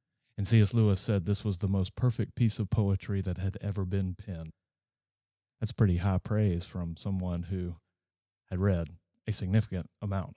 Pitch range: 100-120 Hz